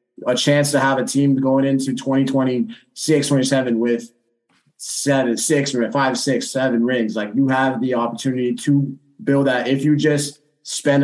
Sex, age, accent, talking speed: male, 20-39, American, 160 wpm